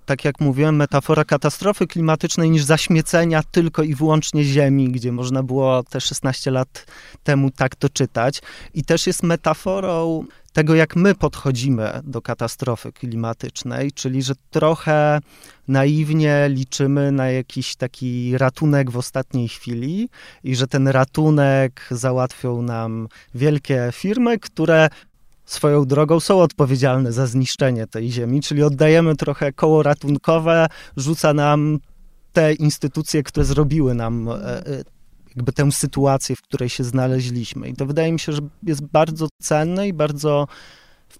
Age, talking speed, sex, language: 30-49, 135 wpm, male, Polish